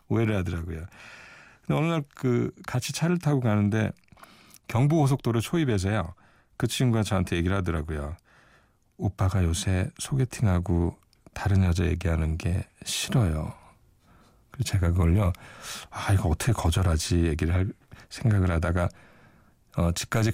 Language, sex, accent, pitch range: Korean, male, native, 90-115 Hz